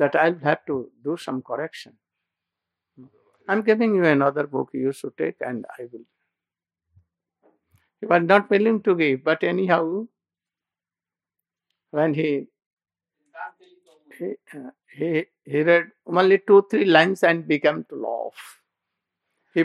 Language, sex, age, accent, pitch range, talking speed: English, male, 60-79, Indian, 140-185 Hz, 130 wpm